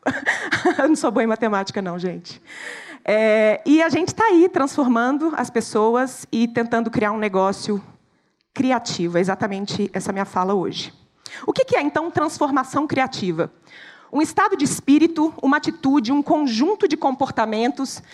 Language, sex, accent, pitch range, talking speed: Portuguese, female, Brazilian, 230-305 Hz, 150 wpm